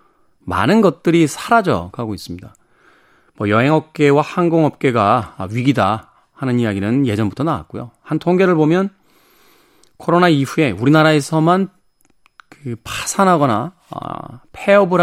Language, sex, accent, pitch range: Korean, male, native, 115-175 Hz